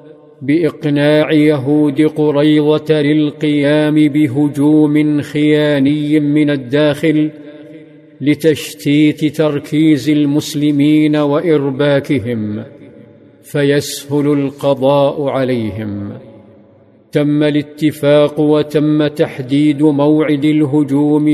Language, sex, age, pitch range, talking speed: Arabic, male, 50-69, 145-150 Hz, 60 wpm